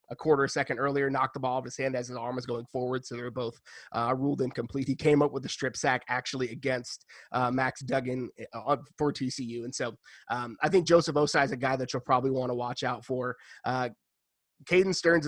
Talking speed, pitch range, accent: 230 wpm, 130-150 Hz, American